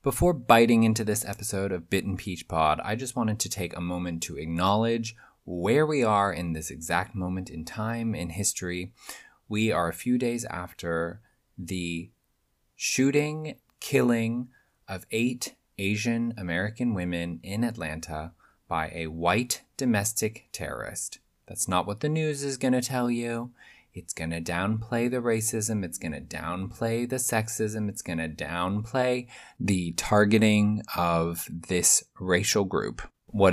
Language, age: English, 20-39